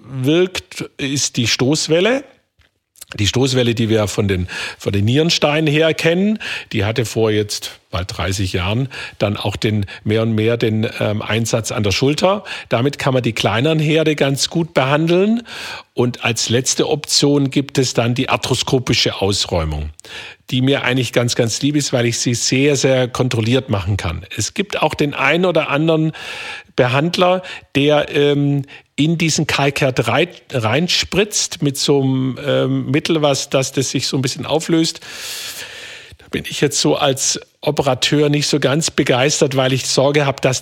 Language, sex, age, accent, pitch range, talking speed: German, male, 50-69, German, 110-145 Hz, 160 wpm